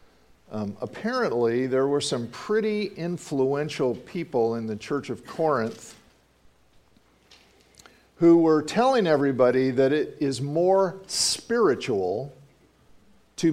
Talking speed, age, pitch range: 100 wpm, 50-69, 130-170 Hz